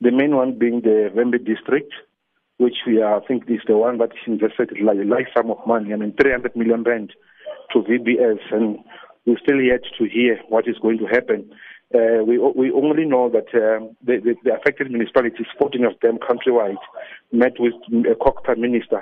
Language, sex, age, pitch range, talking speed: English, male, 50-69, 110-125 Hz, 200 wpm